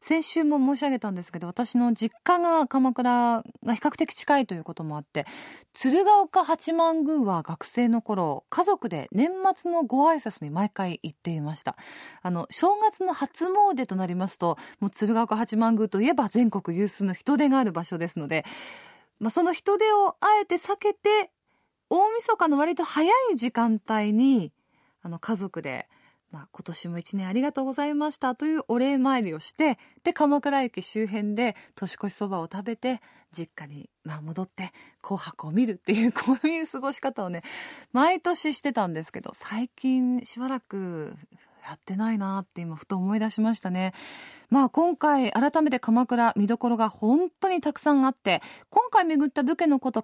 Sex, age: female, 20-39